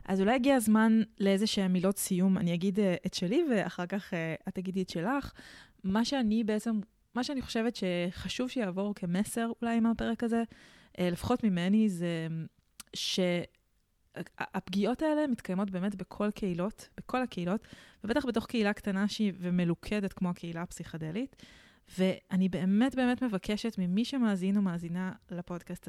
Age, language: 20-39, Hebrew